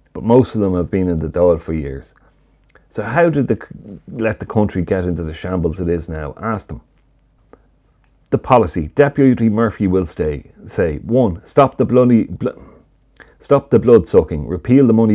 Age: 30-49